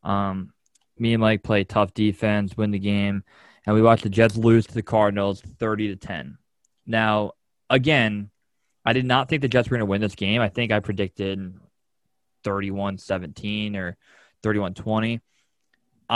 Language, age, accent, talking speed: English, 20-39, American, 155 wpm